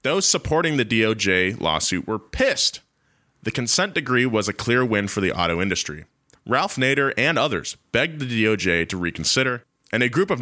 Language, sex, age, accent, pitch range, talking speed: English, male, 20-39, American, 95-145 Hz, 180 wpm